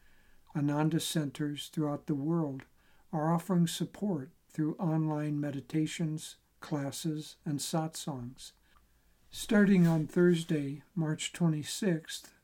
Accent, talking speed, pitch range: American, 90 wpm, 145-170 Hz